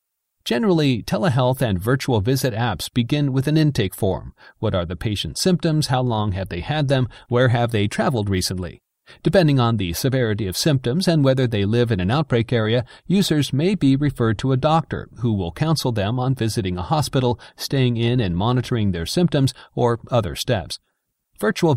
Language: English